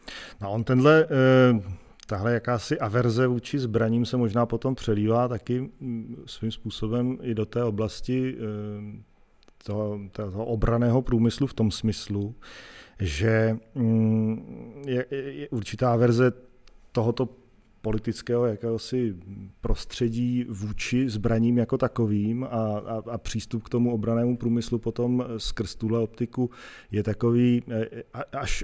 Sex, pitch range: male, 110-120 Hz